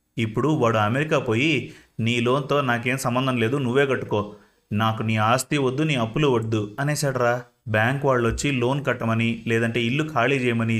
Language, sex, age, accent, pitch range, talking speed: Telugu, male, 30-49, native, 105-130 Hz, 150 wpm